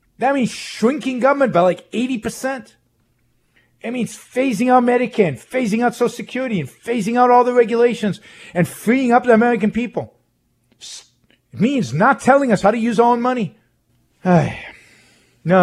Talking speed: 155 wpm